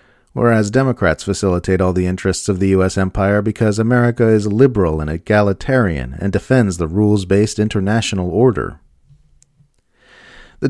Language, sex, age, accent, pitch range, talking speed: English, male, 40-59, American, 95-120 Hz, 130 wpm